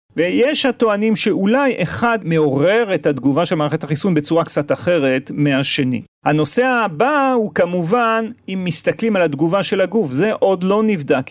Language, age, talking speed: Hebrew, 40-59, 150 wpm